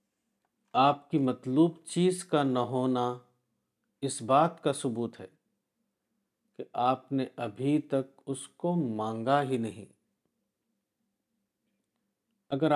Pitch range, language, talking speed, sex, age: 125-160 Hz, Urdu, 110 wpm, male, 50-69